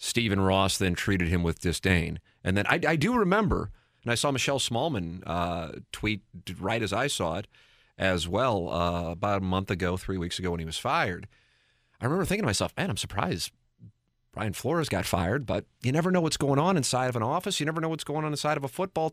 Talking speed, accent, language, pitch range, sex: 225 wpm, American, English, 95-140 Hz, male